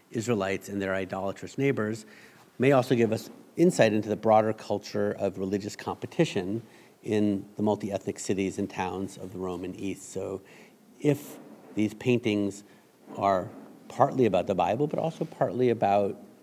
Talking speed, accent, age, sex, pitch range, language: 145 wpm, American, 50-69, male, 100-120 Hz, English